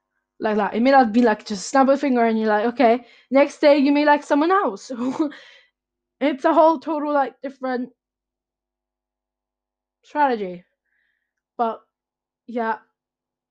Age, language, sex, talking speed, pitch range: 10-29, English, female, 140 wpm, 215-275 Hz